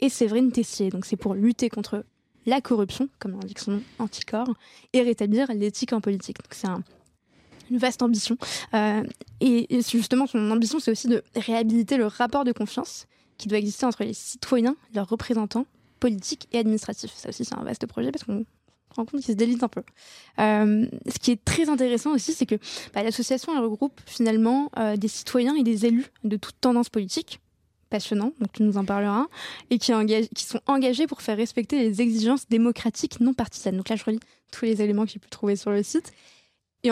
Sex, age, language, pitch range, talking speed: female, 20-39, French, 215-250 Hz, 205 wpm